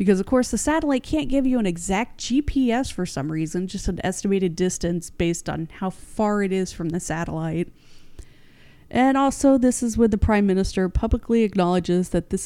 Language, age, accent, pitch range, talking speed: English, 30-49, American, 175-230 Hz, 190 wpm